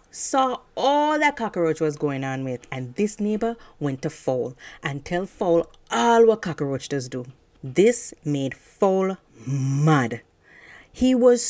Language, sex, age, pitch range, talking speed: English, female, 30-49, 150-225 Hz, 145 wpm